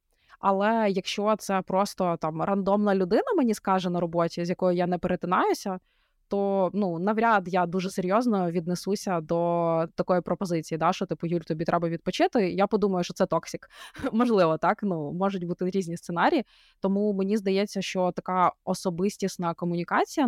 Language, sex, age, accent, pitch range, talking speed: Ukrainian, female, 20-39, native, 175-205 Hz, 155 wpm